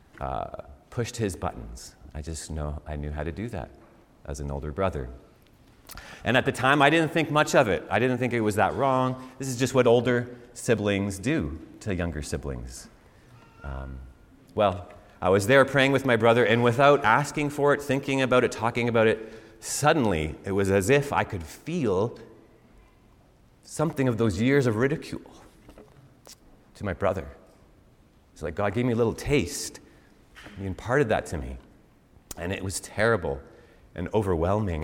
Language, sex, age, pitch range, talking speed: English, male, 30-49, 85-120 Hz, 170 wpm